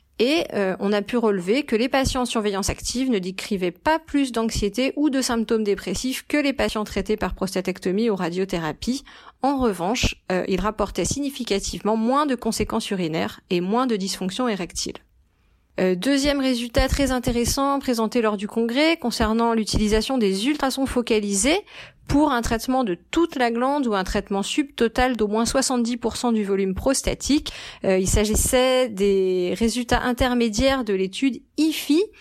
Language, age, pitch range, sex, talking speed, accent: French, 30-49, 200-260 Hz, female, 155 wpm, French